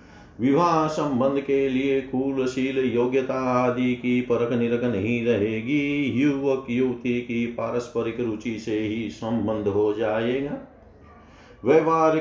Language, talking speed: Hindi, 110 wpm